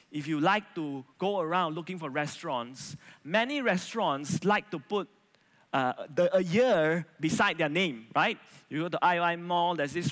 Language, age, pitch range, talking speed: English, 20-39, 155-225 Hz, 170 wpm